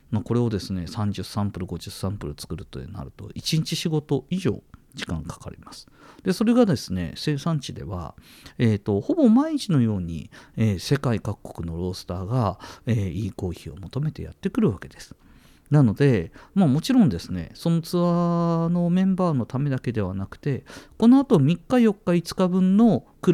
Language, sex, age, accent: Japanese, male, 50-69, native